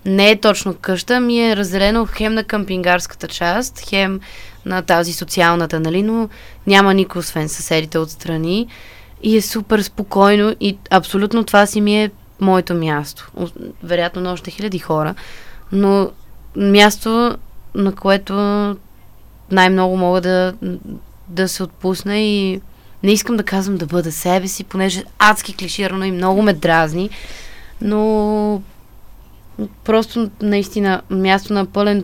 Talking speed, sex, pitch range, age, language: 135 wpm, female, 175-205 Hz, 20-39, Bulgarian